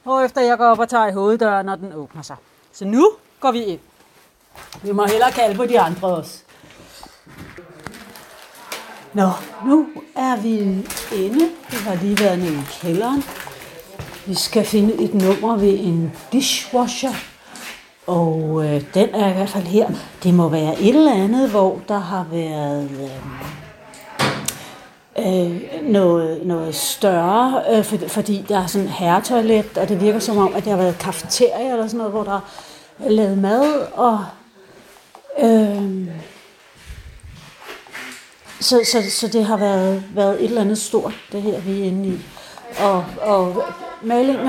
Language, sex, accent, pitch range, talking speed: Danish, female, native, 185-230 Hz, 155 wpm